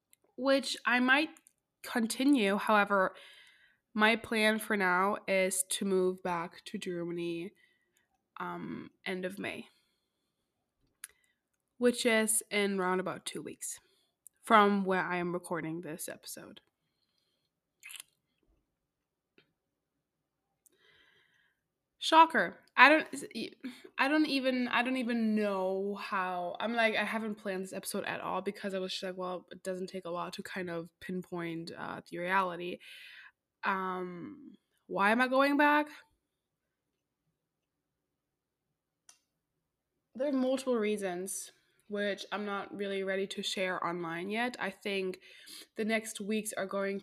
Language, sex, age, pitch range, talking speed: English, female, 20-39, 185-230 Hz, 125 wpm